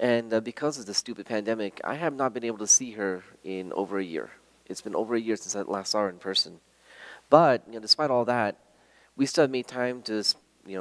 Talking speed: 245 wpm